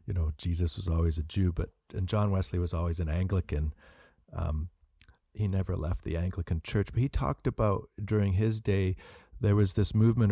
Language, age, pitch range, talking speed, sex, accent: English, 40-59, 90-110 Hz, 190 wpm, male, American